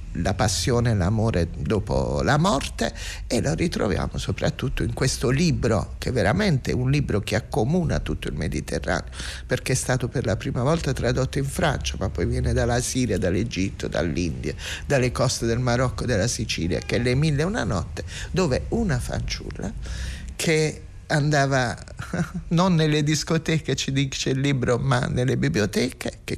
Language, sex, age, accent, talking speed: Italian, male, 50-69, native, 160 wpm